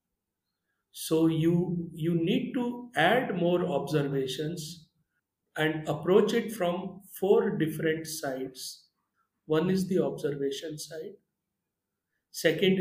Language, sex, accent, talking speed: English, male, Indian, 100 wpm